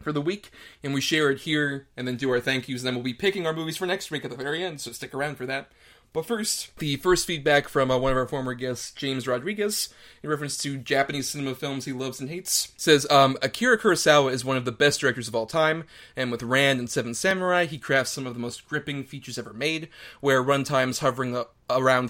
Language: English